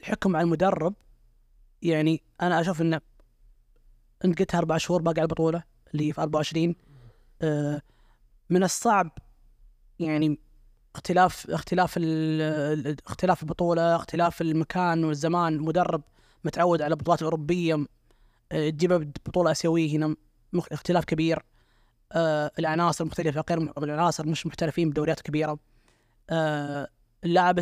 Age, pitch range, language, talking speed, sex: 20-39, 155-180 Hz, Arabic, 105 wpm, female